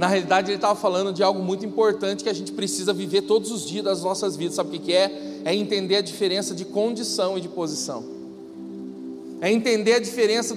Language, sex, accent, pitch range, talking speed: Portuguese, male, Brazilian, 180-270 Hz, 215 wpm